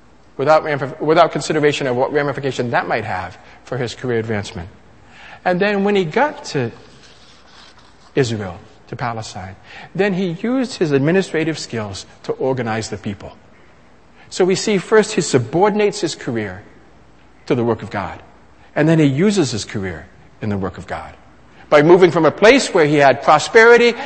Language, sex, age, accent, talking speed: English, male, 50-69, American, 160 wpm